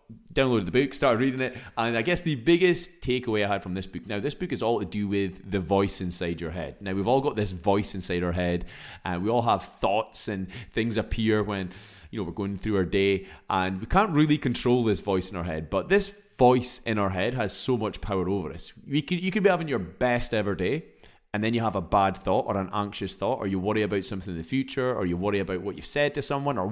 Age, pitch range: 20-39, 95-125 Hz